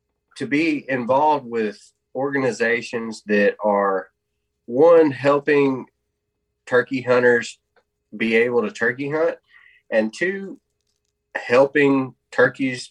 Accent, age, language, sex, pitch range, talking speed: American, 20-39, English, male, 110-135 Hz, 95 wpm